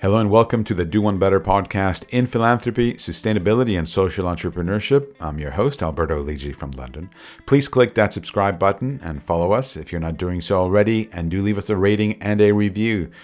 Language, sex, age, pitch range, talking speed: English, male, 50-69, 85-110 Hz, 205 wpm